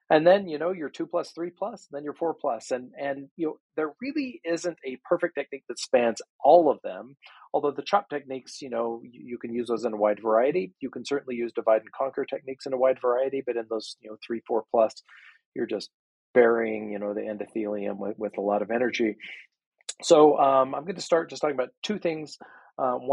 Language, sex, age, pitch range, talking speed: English, male, 40-59, 115-150 Hz, 230 wpm